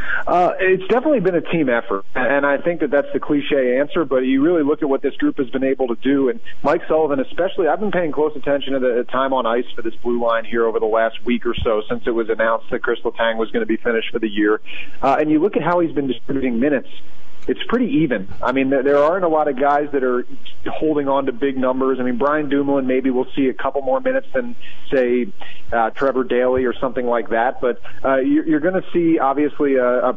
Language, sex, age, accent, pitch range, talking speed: English, male, 40-59, American, 125-145 Hz, 250 wpm